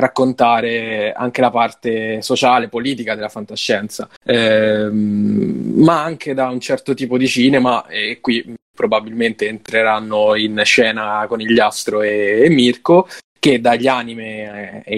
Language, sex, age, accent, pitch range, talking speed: Italian, male, 20-39, native, 110-130 Hz, 140 wpm